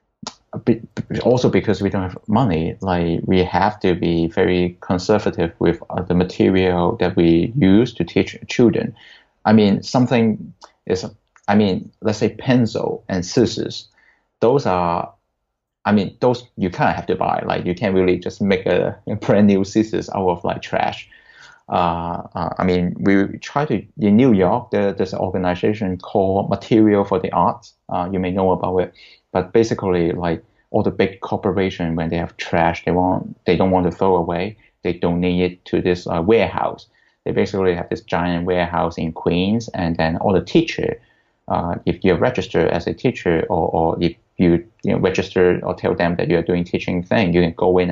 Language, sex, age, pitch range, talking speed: English, male, 30-49, 85-100 Hz, 185 wpm